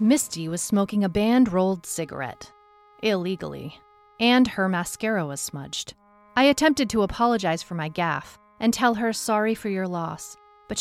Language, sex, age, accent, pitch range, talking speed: English, female, 40-59, American, 170-225 Hz, 150 wpm